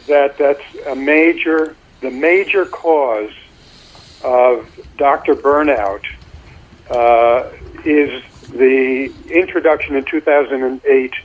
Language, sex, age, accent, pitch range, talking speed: English, male, 50-69, American, 130-165 Hz, 85 wpm